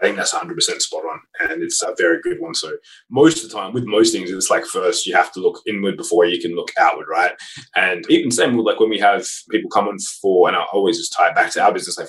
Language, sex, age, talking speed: English, male, 20-39, 285 wpm